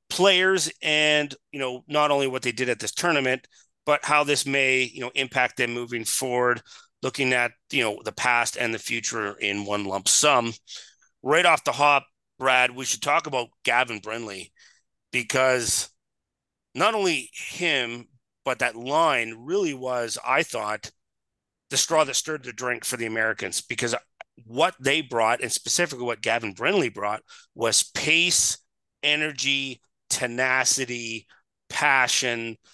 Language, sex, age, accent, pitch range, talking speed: English, male, 30-49, American, 115-145 Hz, 150 wpm